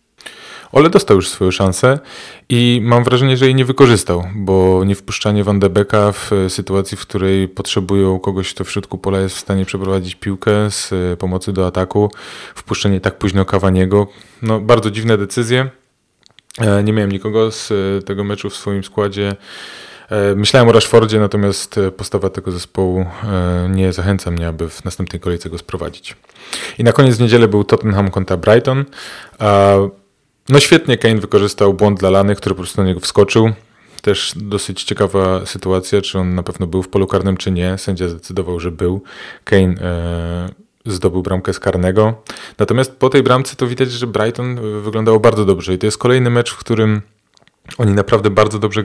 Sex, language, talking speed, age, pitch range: male, Polish, 170 wpm, 20-39, 95-110 Hz